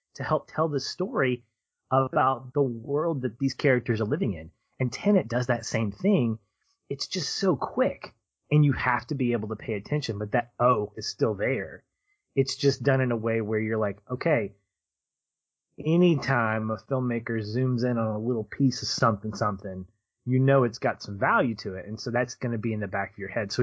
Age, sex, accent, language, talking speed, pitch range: 30-49, male, American, English, 210 wpm, 110-140 Hz